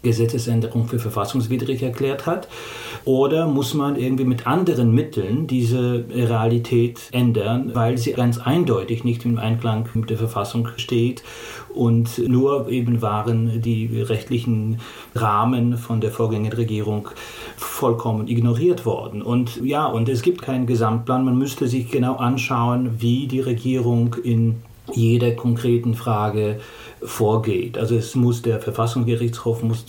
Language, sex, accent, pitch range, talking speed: German, male, German, 115-125 Hz, 135 wpm